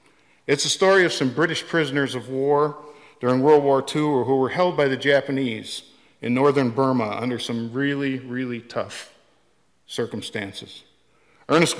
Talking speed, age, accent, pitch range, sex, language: 145 wpm, 50-69, American, 125-150 Hz, male, English